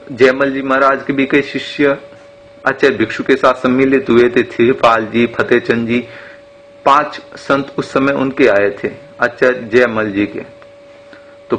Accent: native